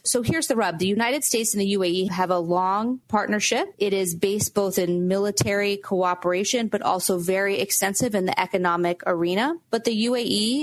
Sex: female